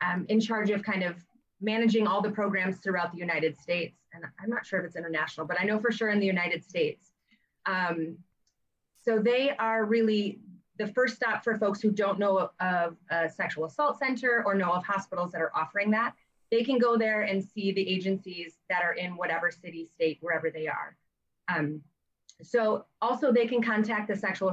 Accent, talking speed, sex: American, 200 wpm, female